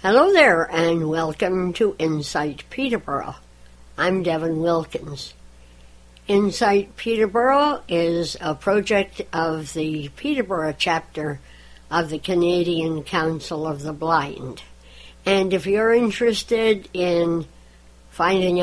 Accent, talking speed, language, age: American, 105 wpm, English, 60-79